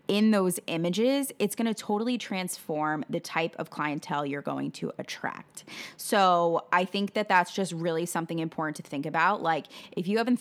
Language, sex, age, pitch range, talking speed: English, female, 20-39, 155-195 Hz, 185 wpm